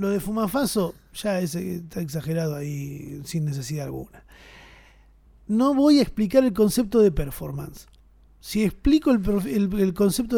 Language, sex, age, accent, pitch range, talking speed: Spanish, male, 30-49, Argentinian, 165-210 Hz, 145 wpm